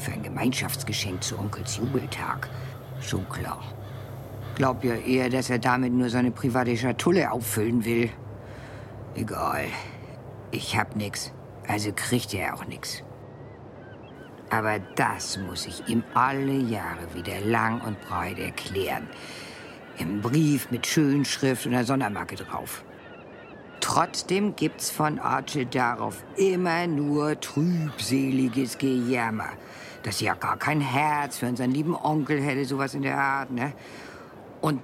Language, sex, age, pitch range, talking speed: German, female, 50-69, 120-150 Hz, 125 wpm